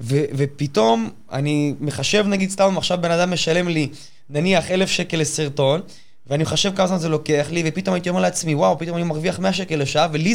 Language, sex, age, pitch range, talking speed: Hebrew, male, 20-39, 145-185 Hz, 205 wpm